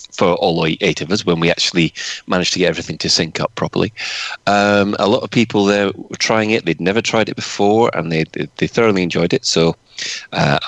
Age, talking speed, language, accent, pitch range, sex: 30-49, 220 wpm, English, British, 90-120 Hz, male